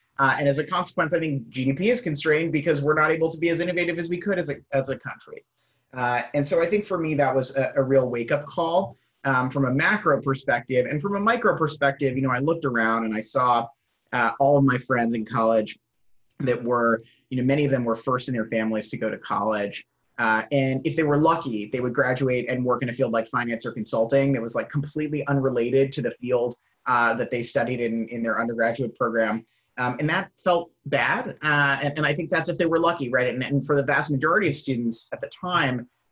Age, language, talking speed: 30-49, English, 240 wpm